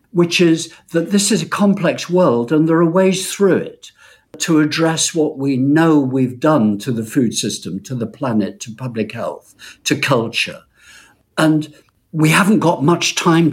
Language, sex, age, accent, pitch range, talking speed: English, male, 60-79, British, 130-170 Hz, 175 wpm